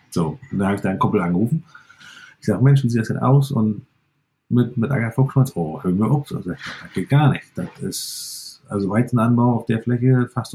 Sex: male